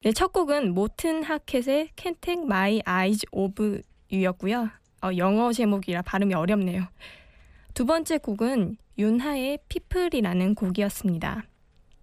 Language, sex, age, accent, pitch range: Korean, female, 20-39, native, 195-250 Hz